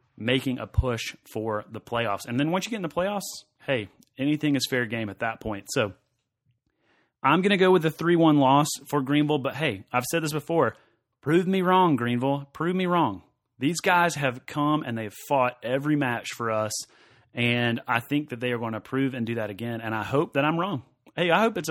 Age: 30-49